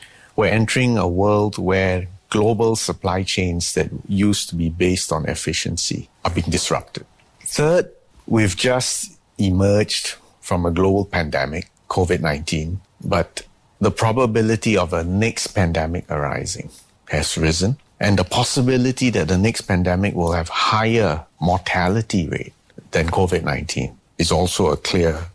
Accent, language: Malaysian, English